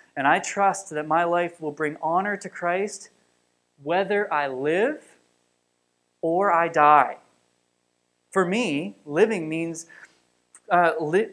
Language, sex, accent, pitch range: English, male, American, 135-195 Hz